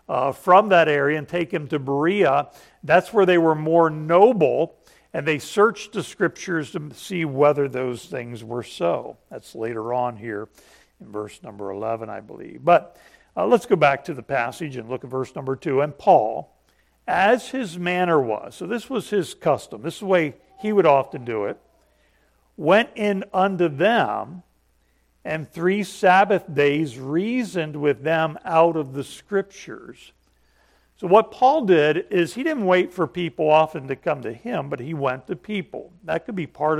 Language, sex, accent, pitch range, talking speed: English, male, American, 125-180 Hz, 180 wpm